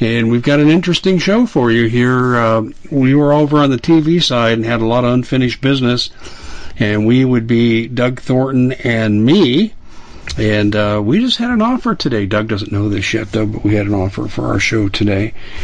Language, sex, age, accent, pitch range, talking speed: English, male, 50-69, American, 105-130 Hz, 210 wpm